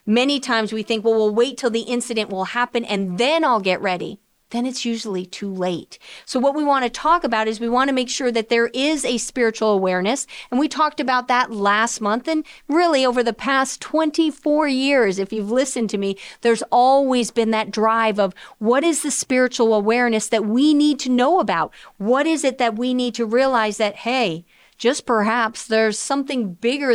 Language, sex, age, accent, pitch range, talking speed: English, female, 40-59, American, 220-280 Hz, 205 wpm